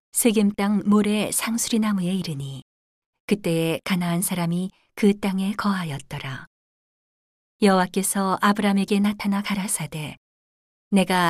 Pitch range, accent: 160-205 Hz, native